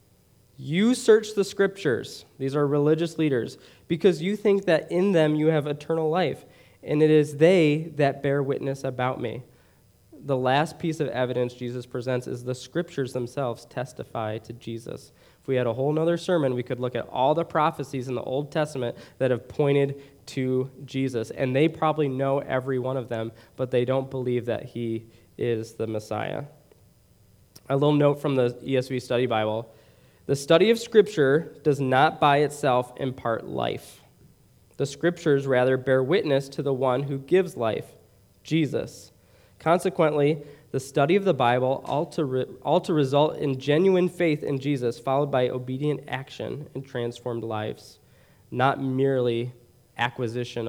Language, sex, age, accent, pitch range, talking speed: English, male, 20-39, American, 125-150 Hz, 165 wpm